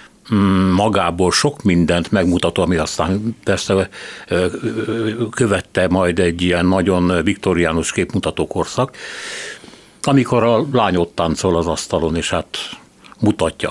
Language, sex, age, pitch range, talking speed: Hungarian, male, 60-79, 85-110 Hz, 110 wpm